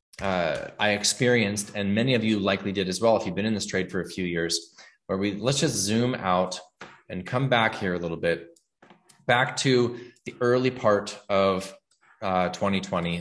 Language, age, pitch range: English, 20-39, 95-120 Hz